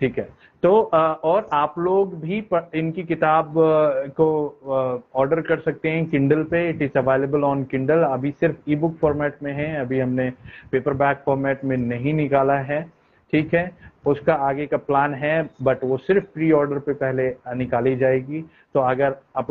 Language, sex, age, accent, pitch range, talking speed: Hindi, male, 30-49, native, 130-160 Hz, 165 wpm